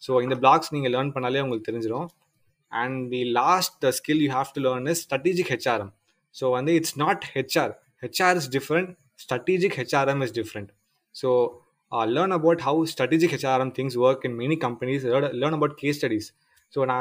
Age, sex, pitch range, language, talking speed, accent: 20-39, male, 125-165 Hz, English, 170 wpm, Indian